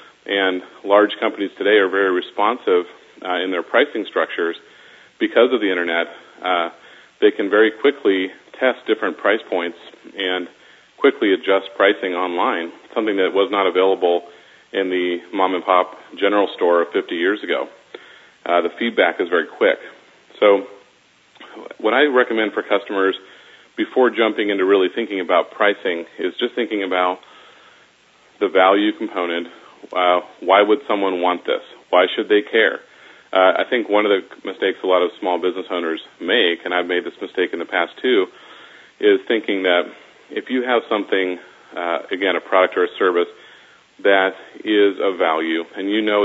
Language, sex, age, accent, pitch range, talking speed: English, male, 40-59, American, 90-150 Hz, 160 wpm